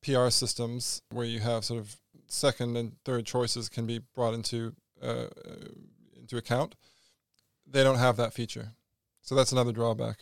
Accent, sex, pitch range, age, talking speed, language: American, male, 115-130 Hz, 20-39, 160 wpm, English